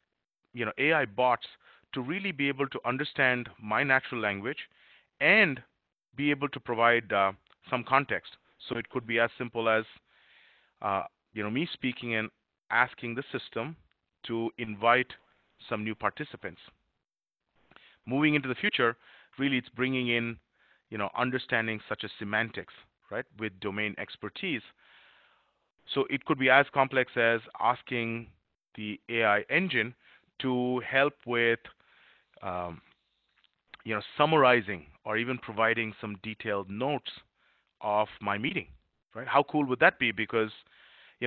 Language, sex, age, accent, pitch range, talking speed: English, male, 30-49, Indian, 110-130 Hz, 140 wpm